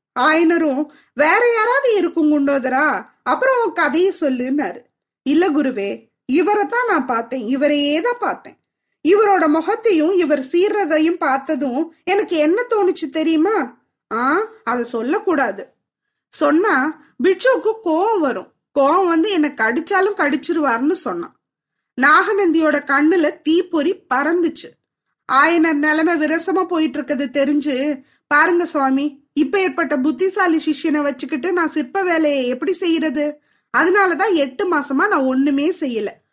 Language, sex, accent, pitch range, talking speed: Tamil, female, native, 290-365 Hz, 105 wpm